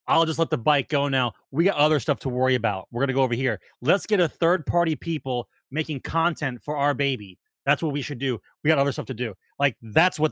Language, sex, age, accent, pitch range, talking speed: English, male, 30-49, American, 135-175 Hz, 255 wpm